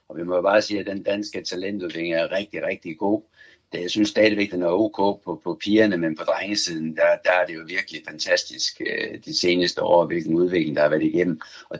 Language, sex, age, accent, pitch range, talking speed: Danish, male, 60-79, native, 90-125 Hz, 220 wpm